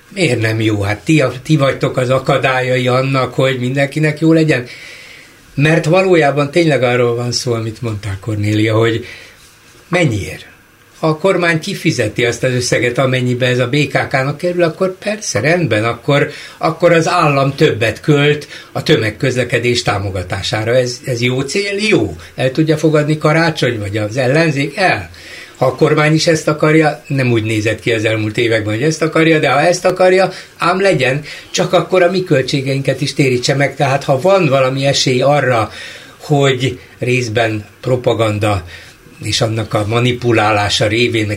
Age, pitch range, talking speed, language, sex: 60-79, 115-155 Hz, 155 wpm, Hungarian, male